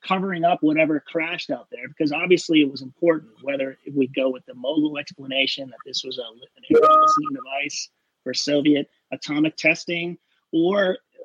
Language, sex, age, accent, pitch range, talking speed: English, male, 30-49, American, 155-250 Hz, 155 wpm